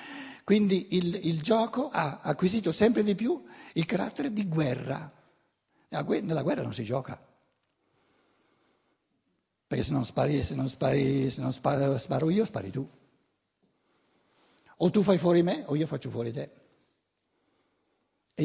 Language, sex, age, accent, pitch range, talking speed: Italian, male, 60-79, native, 140-215 Hz, 140 wpm